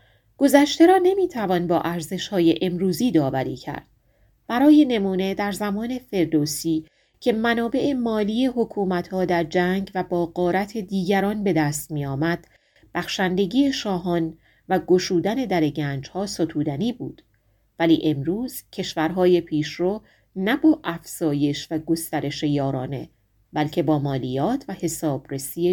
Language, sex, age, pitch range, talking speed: Persian, female, 30-49, 150-205 Hz, 120 wpm